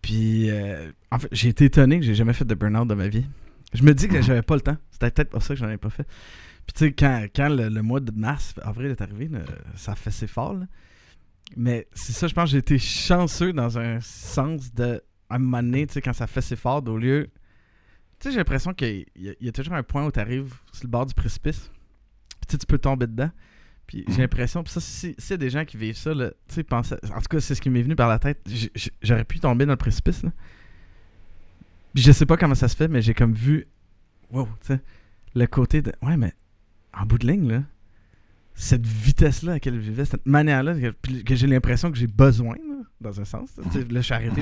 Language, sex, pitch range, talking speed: French, male, 105-140 Hz, 255 wpm